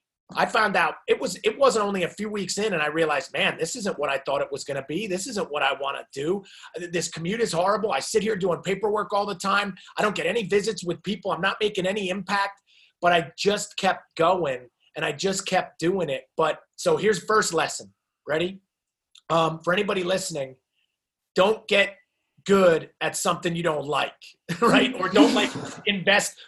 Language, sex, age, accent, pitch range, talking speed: English, male, 30-49, American, 170-205 Hz, 205 wpm